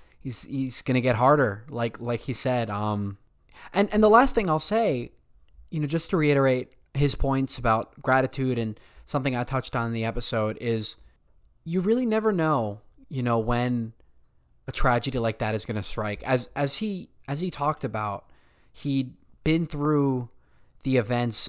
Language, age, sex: English, 20-39, male